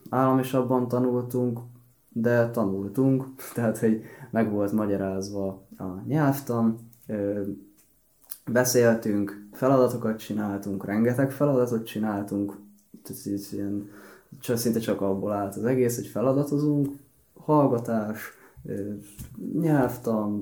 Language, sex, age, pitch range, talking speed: Hungarian, male, 20-39, 100-125 Hz, 85 wpm